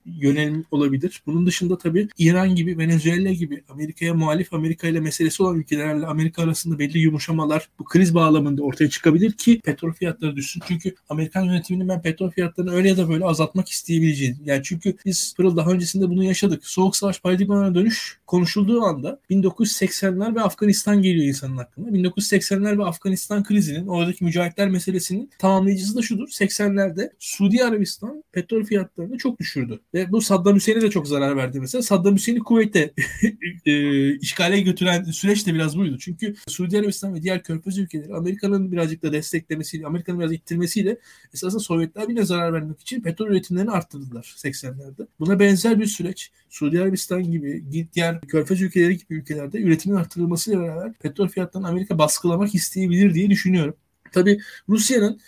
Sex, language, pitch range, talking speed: male, Turkish, 165-200 Hz, 155 wpm